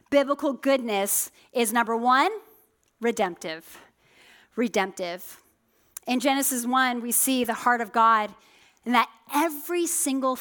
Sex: female